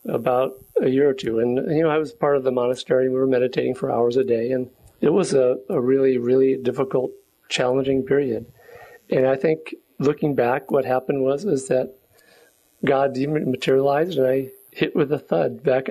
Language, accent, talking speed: English, American, 190 wpm